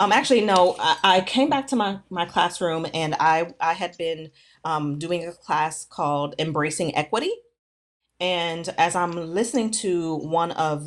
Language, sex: English, female